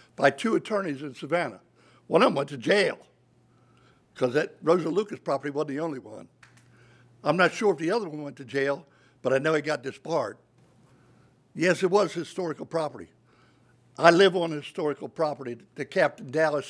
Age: 60-79